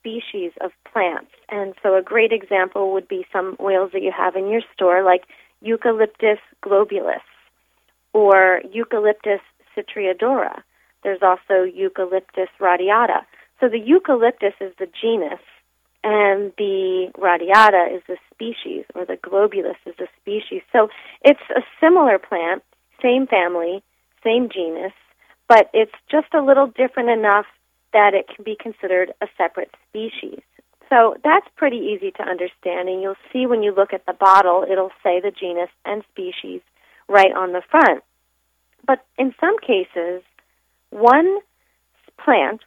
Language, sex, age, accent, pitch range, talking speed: English, female, 30-49, American, 185-240 Hz, 140 wpm